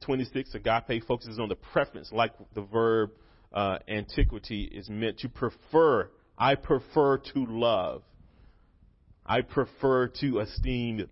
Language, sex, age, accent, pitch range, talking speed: English, male, 30-49, American, 105-135 Hz, 125 wpm